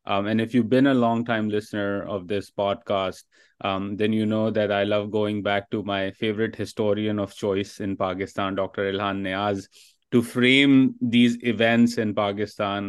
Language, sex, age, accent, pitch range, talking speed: English, male, 30-49, Indian, 100-110 Hz, 170 wpm